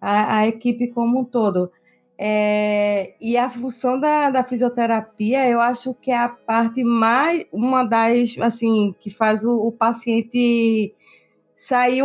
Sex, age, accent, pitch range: female, 20-39, Brazilian, 220-265 Hz